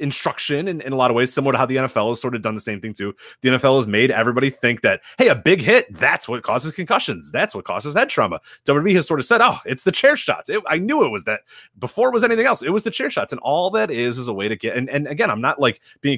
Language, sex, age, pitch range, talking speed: English, male, 30-49, 115-150 Hz, 305 wpm